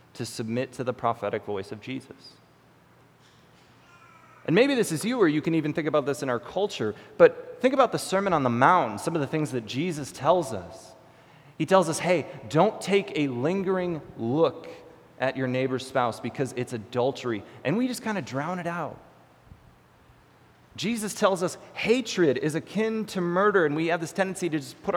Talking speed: 190 wpm